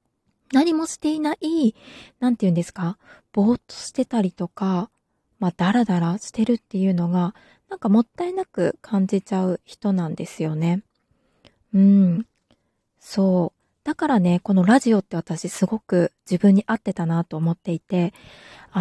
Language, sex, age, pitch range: Japanese, female, 20-39, 175-245 Hz